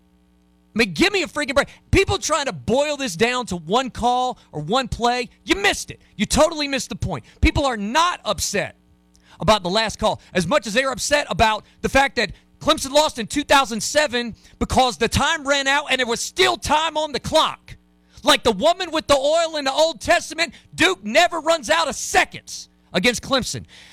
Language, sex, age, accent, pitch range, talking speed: English, male, 40-59, American, 245-320 Hz, 200 wpm